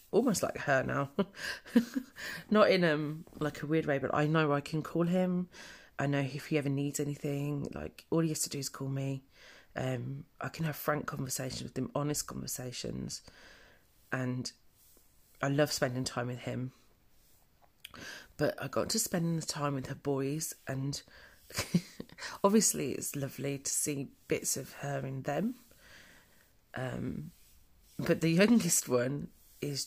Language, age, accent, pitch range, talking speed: English, 30-49, British, 135-165 Hz, 155 wpm